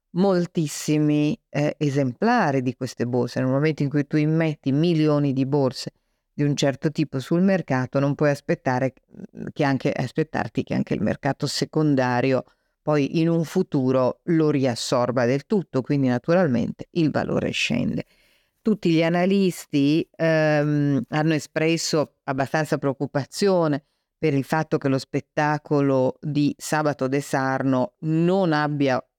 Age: 50-69